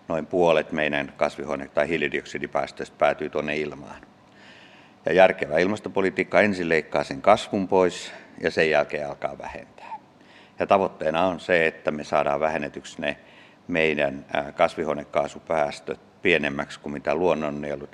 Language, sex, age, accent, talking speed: Finnish, male, 50-69, native, 125 wpm